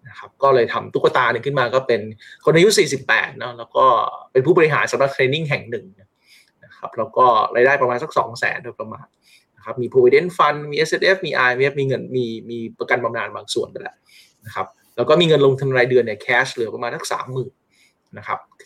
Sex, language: male, Thai